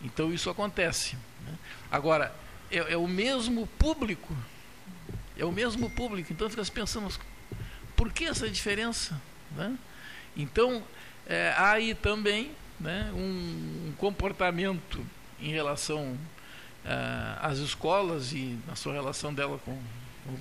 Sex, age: male, 60-79